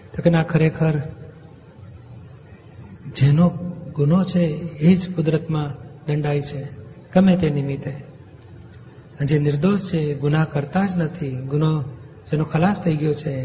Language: Gujarati